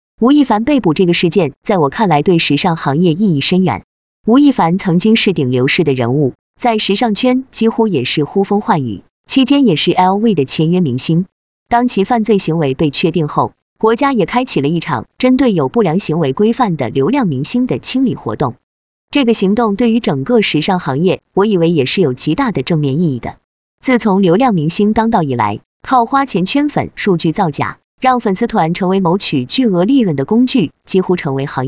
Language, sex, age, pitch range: Chinese, female, 20-39, 150-230 Hz